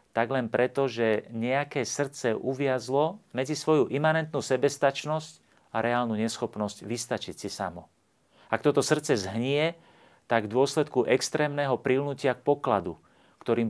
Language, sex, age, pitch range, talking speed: Slovak, male, 40-59, 100-125 Hz, 125 wpm